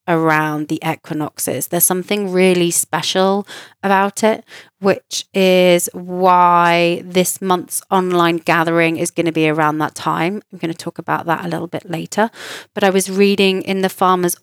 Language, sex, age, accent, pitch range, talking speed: English, female, 20-39, British, 170-195 Hz, 165 wpm